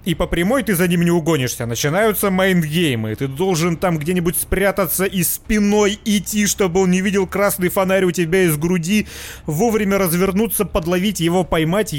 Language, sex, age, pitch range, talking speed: Russian, male, 30-49, 145-185 Hz, 165 wpm